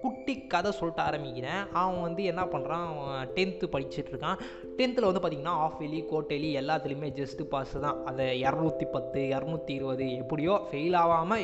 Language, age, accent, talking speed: Tamil, 20-39, native, 140 wpm